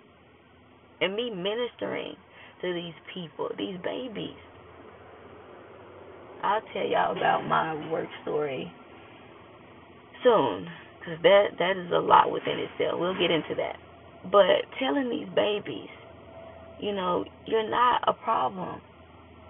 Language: English